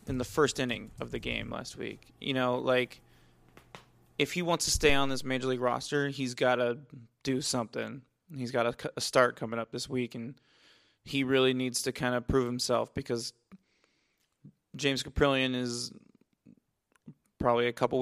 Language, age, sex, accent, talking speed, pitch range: English, 20-39, male, American, 175 wpm, 125-140 Hz